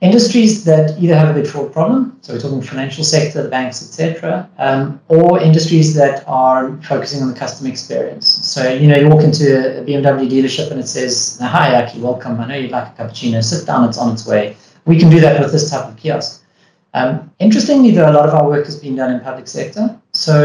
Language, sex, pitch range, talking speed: English, male, 135-170 Hz, 225 wpm